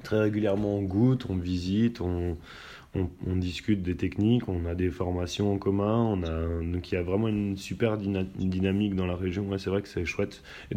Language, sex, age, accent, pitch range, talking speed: French, male, 20-39, French, 90-105 Hz, 210 wpm